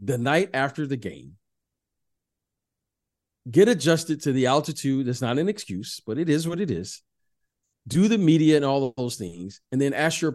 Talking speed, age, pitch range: 185 wpm, 40-59, 125-195 Hz